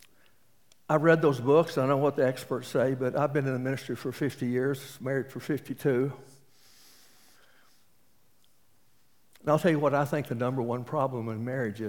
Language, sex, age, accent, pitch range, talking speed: English, male, 60-79, American, 120-145 Hz, 180 wpm